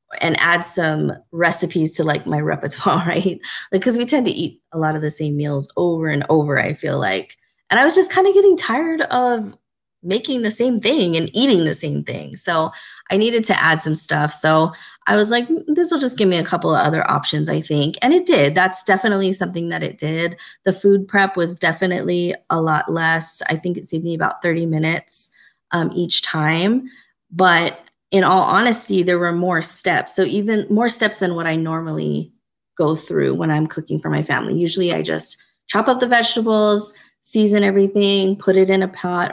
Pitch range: 160-205 Hz